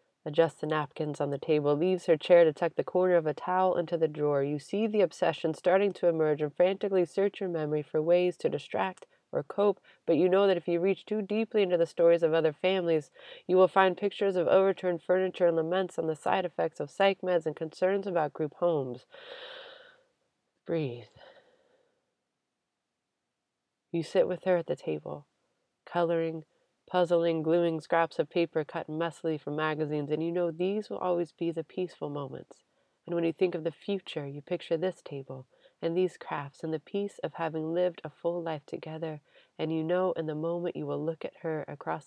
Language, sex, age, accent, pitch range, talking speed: English, female, 30-49, American, 155-190 Hz, 195 wpm